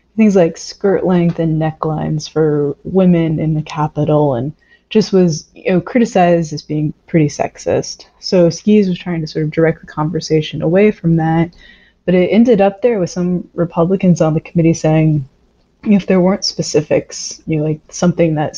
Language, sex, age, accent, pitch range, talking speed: English, female, 20-39, American, 155-185 Hz, 180 wpm